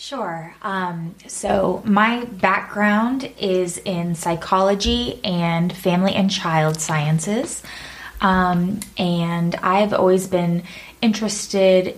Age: 20-39